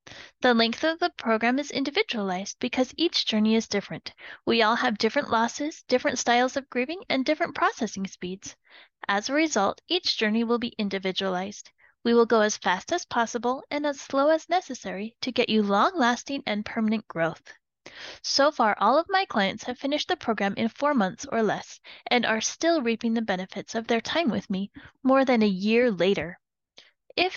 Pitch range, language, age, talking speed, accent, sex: 215-290 Hz, English, 10-29, 185 wpm, American, female